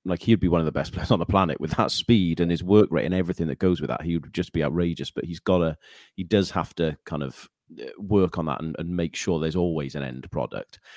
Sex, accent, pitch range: male, British, 85-100 Hz